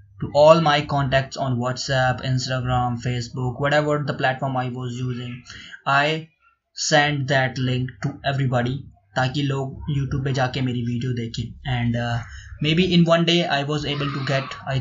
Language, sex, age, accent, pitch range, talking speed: Hindi, male, 20-39, native, 125-150 Hz, 165 wpm